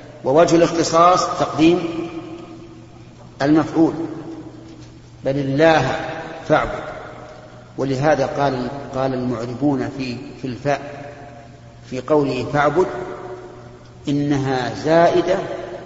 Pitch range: 125-150 Hz